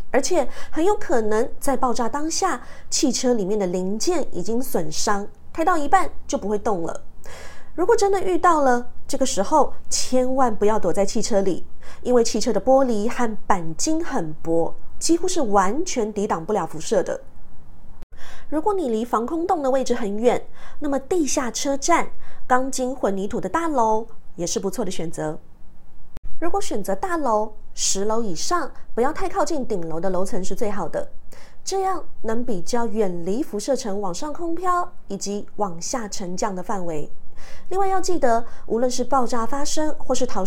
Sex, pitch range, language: female, 205-300 Hz, Chinese